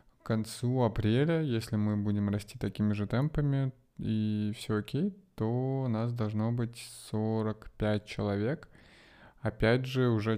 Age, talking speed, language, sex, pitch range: 20-39, 135 wpm, Russian, male, 105-120 Hz